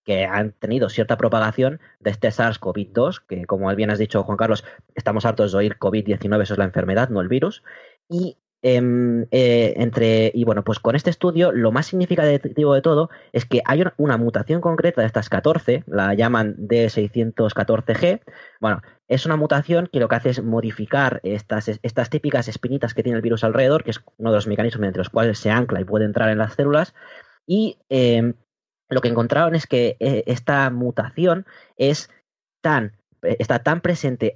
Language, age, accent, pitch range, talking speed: Spanish, 20-39, Spanish, 110-135 Hz, 185 wpm